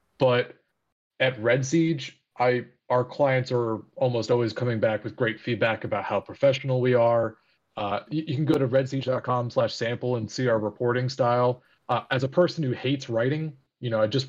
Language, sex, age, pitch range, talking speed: English, male, 30-49, 115-140 Hz, 175 wpm